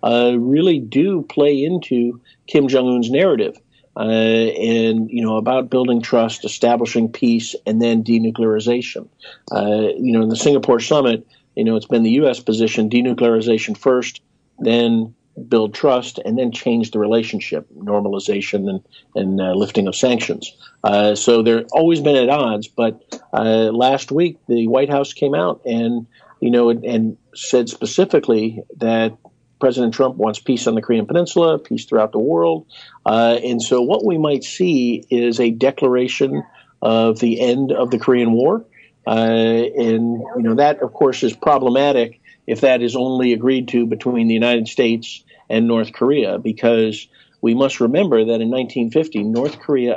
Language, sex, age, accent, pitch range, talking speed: English, male, 50-69, American, 110-125 Hz, 160 wpm